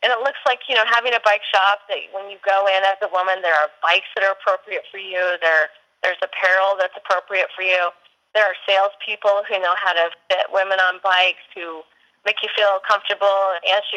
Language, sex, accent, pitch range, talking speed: English, female, American, 180-225 Hz, 220 wpm